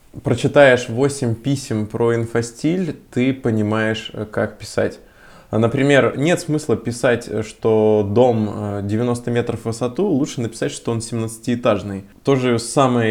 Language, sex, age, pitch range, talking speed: Russian, male, 20-39, 105-125 Hz, 125 wpm